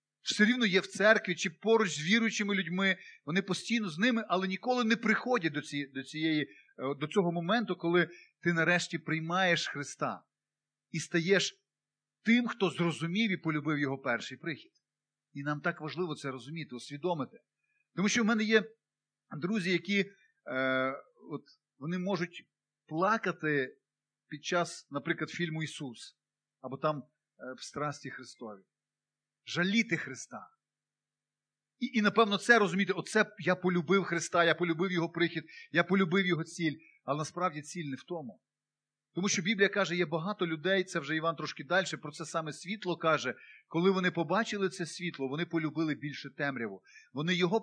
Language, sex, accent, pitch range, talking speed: Ukrainian, male, native, 155-195 Hz, 155 wpm